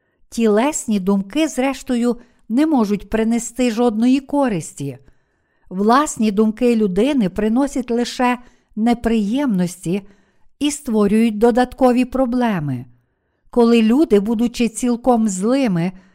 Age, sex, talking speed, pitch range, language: 50-69, female, 90 wpm, 200-255 Hz, Ukrainian